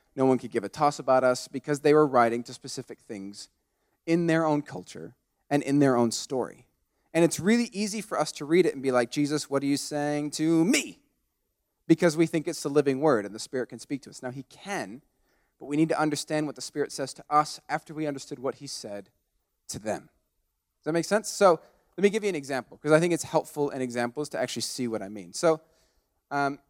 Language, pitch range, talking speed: English, 130-165 Hz, 235 wpm